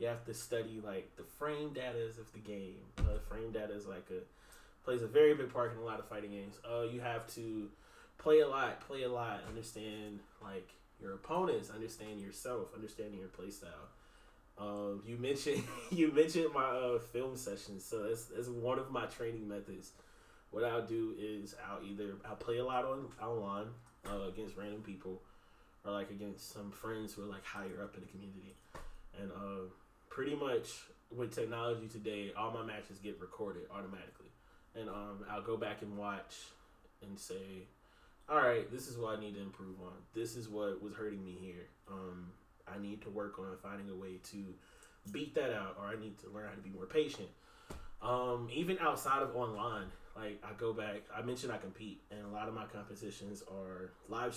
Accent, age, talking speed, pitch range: American, 20-39, 195 wpm, 100-115 Hz